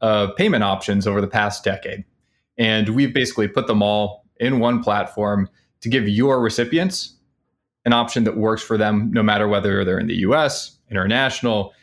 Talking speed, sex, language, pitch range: 170 wpm, male, English, 105-130 Hz